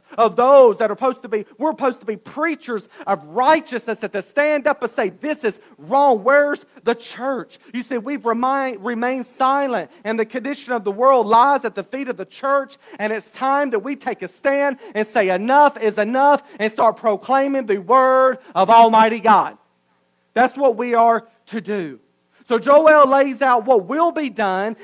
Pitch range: 200-265 Hz